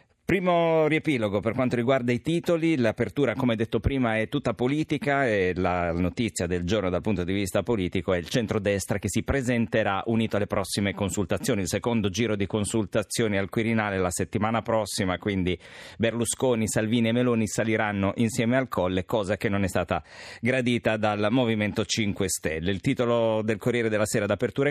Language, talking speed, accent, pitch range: Italian, 170 wpm, native, 95-120 Hz